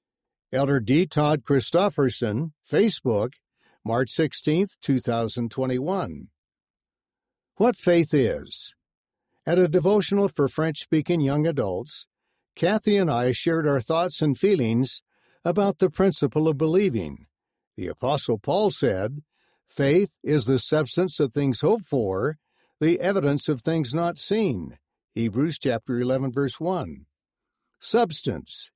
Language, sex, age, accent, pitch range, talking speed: English, male, 60-79, American, 135-180 Hz, 115 wpm